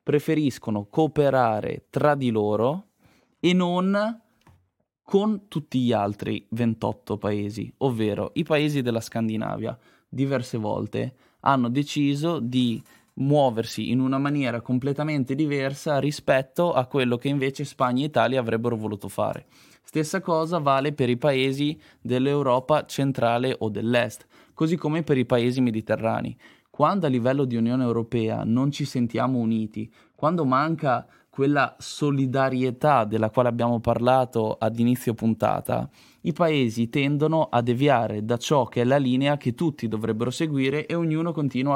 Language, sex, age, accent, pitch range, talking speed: Italian, male, 20-39, native, 115-145 Hz, 135 wpm